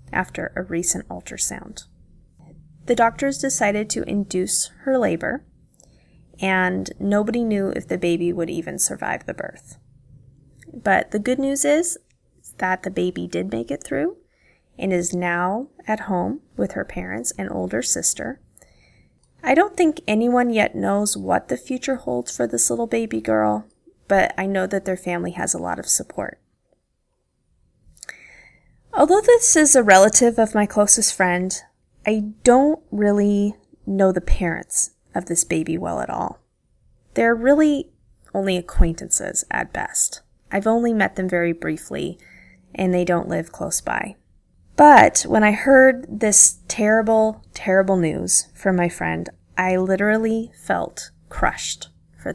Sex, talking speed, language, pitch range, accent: female, 145 wpm, English, 165-230 Hz, American